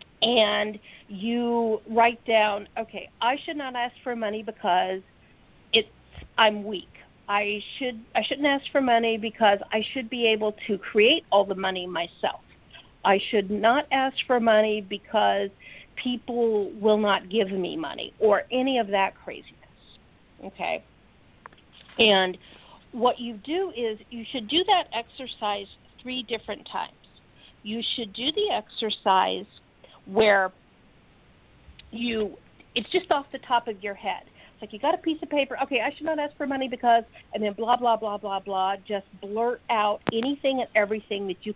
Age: 50-69